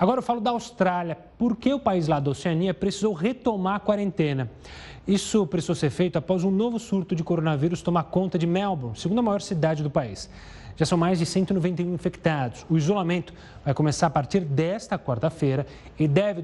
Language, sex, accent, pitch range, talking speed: Portuguese, male, Brazilian, 150-205 Hz, 185 wpm